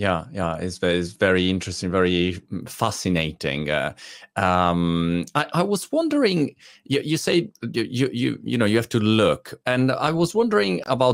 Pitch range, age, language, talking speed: 95-135 Hz, 30-49, Italian, 155 wpm